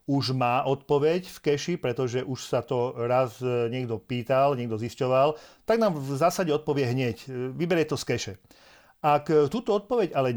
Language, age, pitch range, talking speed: Slovak, 40-59, 125-155 Hz, 160 wpm